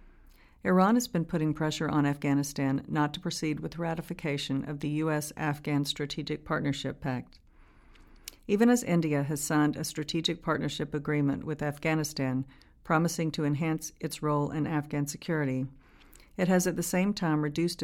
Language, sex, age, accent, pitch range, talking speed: English, female, 50-69, American, 145-170 Hz, 150 wpm